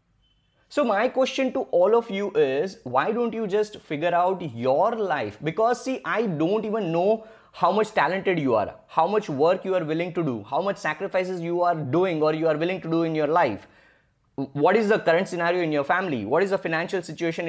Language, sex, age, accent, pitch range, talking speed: English, male, 20-39, Indian, 165-215 Hz, 215 wpm